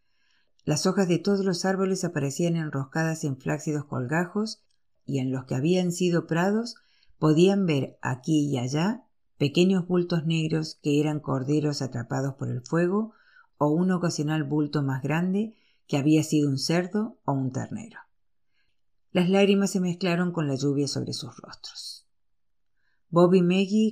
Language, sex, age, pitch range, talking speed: Spanish, female, 50-69, 145-180 Hz, 150 wpm